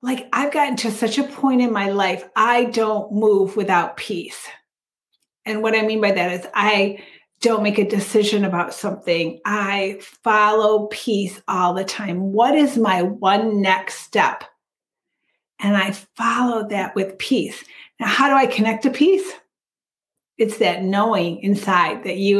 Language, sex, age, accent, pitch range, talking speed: English, female, 30-49, American, 195-235 Hz, 160 wpm